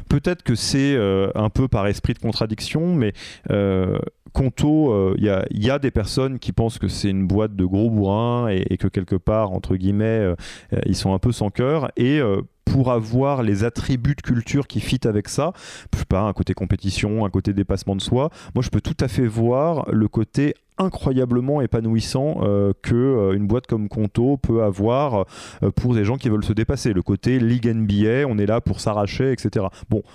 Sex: male